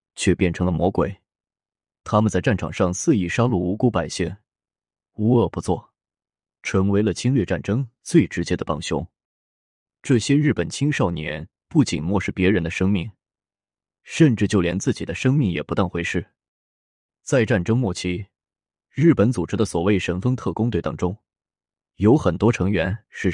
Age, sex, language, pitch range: 20-39, male, Chinese, 85-105 Hz